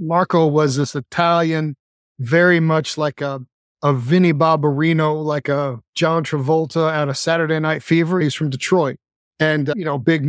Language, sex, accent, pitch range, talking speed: English, male, American, 150-185 Hz, 165 wpm